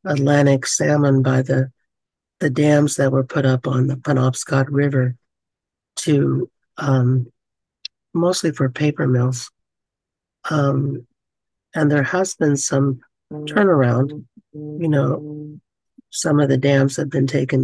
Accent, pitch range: American, 130-145 Hz